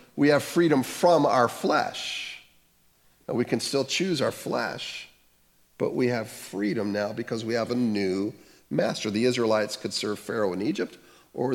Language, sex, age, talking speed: English, male, 50-69, 165 wpm